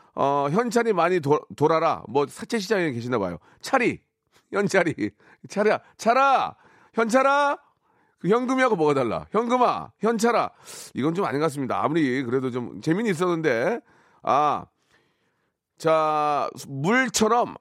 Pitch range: 140-230 Hz